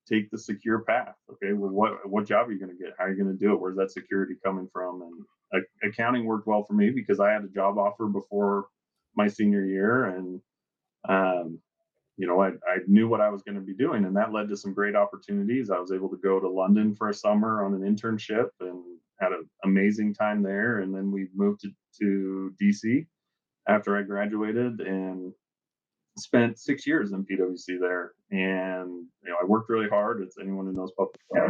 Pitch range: 95-105 Hz